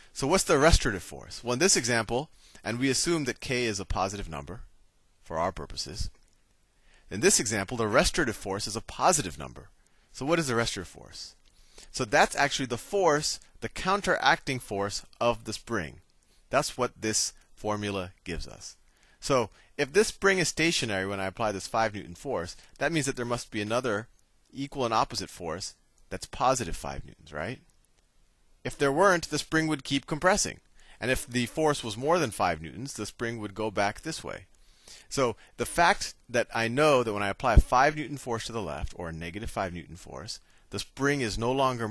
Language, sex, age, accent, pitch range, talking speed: English, male, 30-49, American, 95-135 Hz, 195 wpm